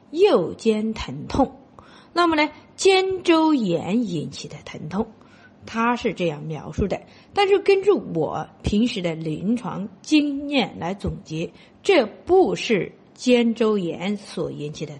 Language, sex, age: Chinese, female, 50-69